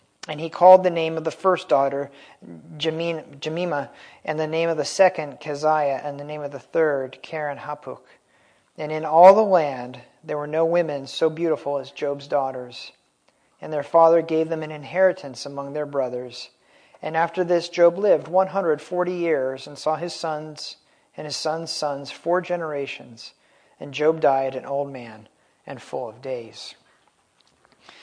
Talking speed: 165 wpm